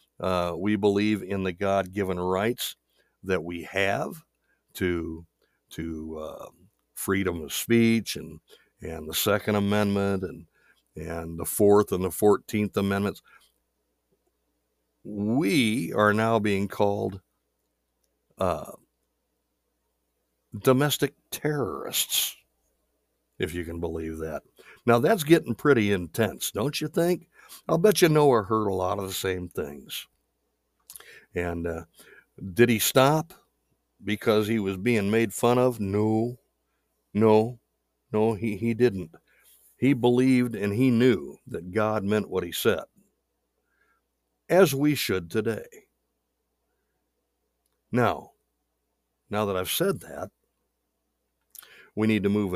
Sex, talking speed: male, 120 wpm